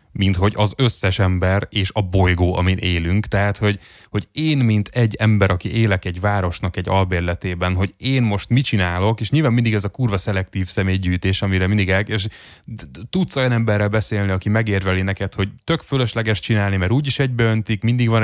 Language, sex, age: Hungarian, male, 20-39